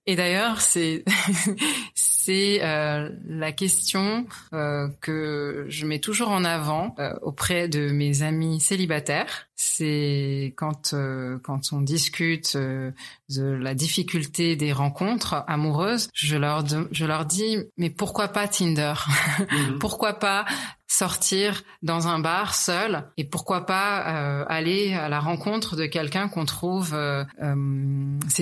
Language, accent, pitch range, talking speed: French, French, 155-200 Hz, 135 wpm